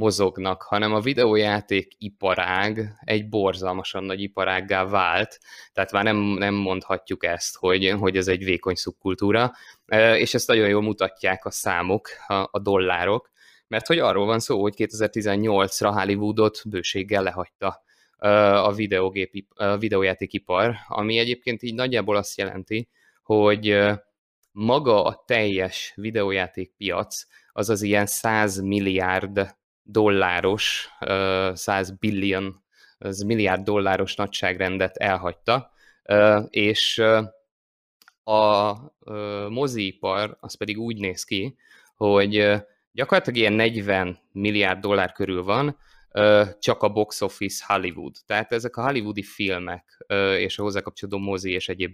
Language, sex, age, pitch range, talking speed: Hungarian, male, 20-39, 95-110 Hz, 115 wpm